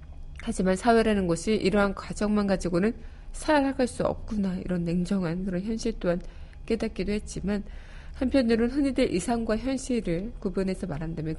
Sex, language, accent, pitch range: female, Korean, native, 175-220 Hz